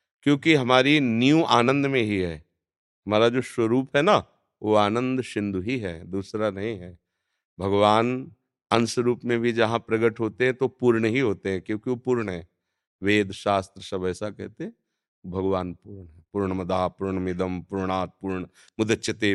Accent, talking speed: native, 155 wpm